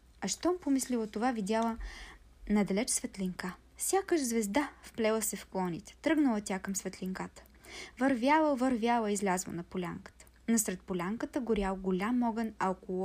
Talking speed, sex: 135 wpm, female